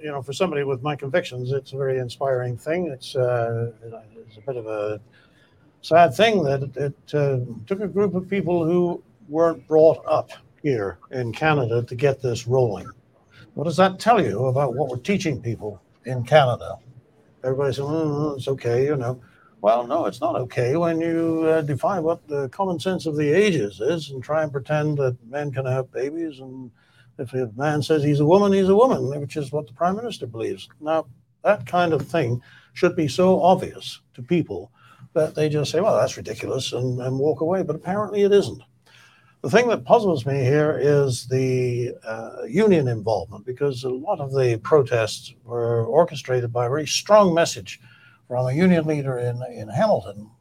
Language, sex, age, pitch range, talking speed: English, male, 60-79, 125-160 Hz, 190 wpm